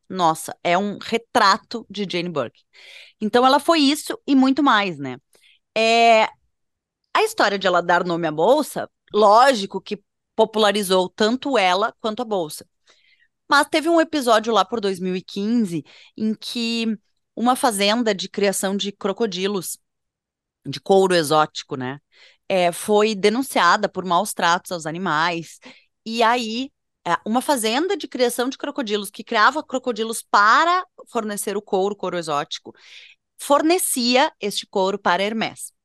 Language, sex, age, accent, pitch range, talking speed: Portuguese, female, 20-39, Brazilian, 175-230 Hz, 135 wpm